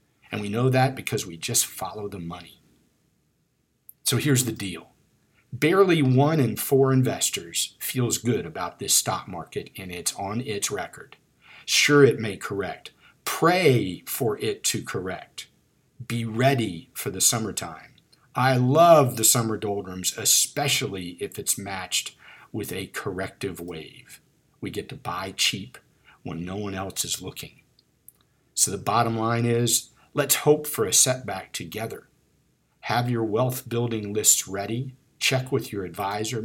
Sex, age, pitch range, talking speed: male, 50-69, 110-135 Hz, 145 wpm